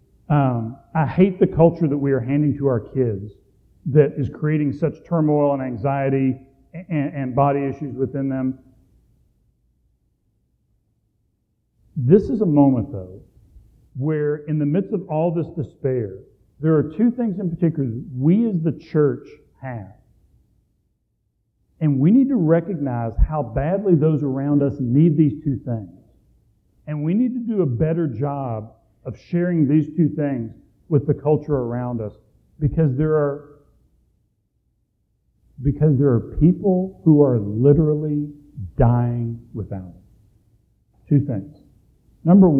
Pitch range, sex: 115-155 Hz, male